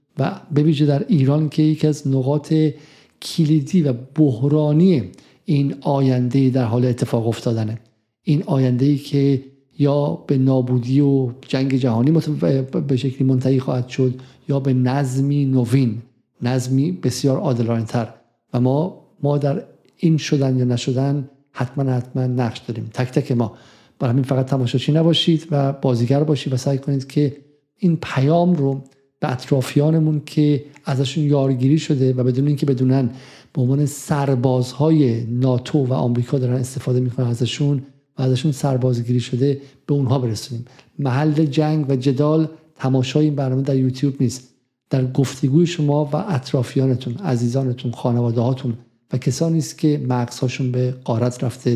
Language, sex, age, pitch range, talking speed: Persian, male, 50-69, 125-145 Hz, 140 wpm